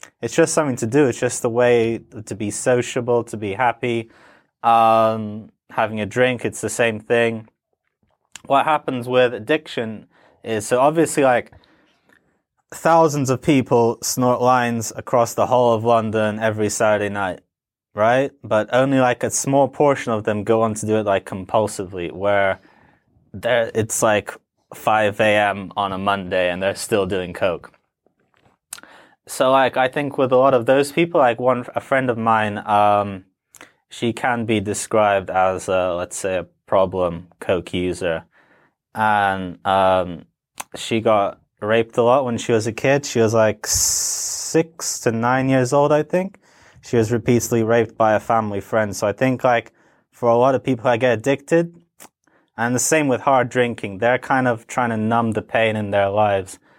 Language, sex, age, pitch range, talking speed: English, male, 20-39, 105-125 Hz, 170 wpm